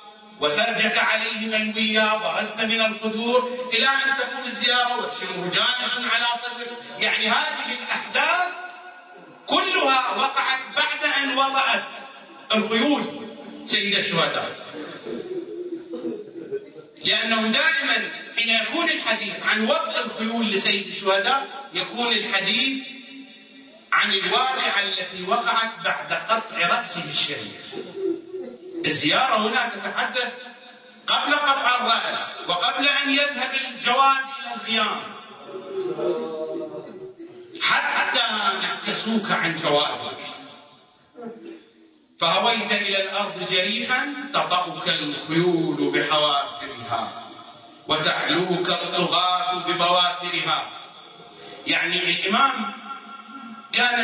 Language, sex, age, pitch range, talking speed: English, male, 40-59, 200-270 Hz, 55 wpm